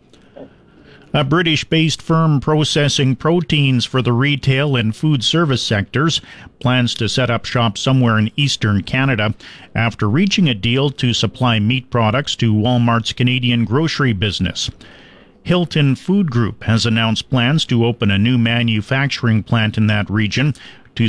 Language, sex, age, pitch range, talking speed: English, male, 50-69, 110-130 Hz, 140 wpm